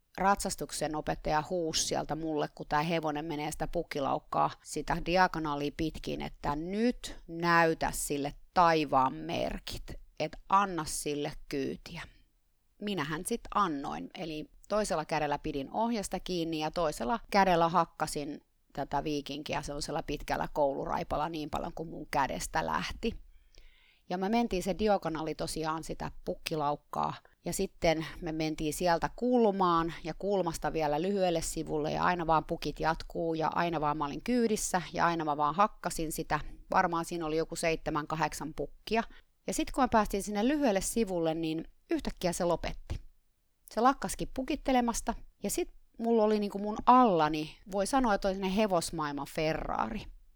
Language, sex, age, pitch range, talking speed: Finnish, female, 30-49, 155-200 Hz, 140 wpm